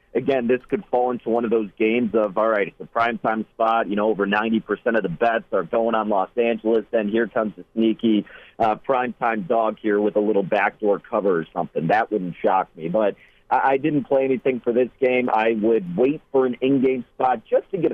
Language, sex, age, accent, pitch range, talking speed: English, male, 40-59, American, 110-135 Hz, 225 wpm